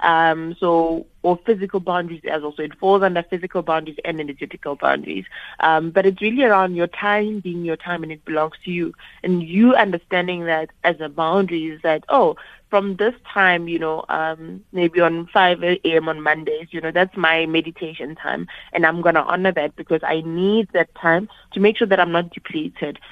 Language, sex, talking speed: English, female, 195 wpm